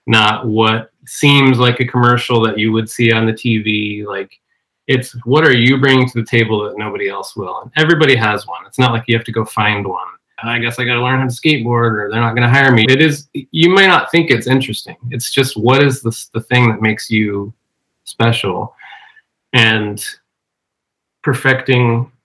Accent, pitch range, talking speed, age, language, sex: American, 105-130 Hz, 205 wpm, 30-49, English, male